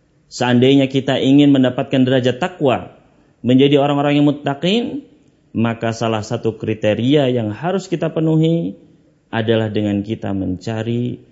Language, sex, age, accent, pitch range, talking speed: English, male, 30-49, Indonesian, 105-145 Hz, 115 wpm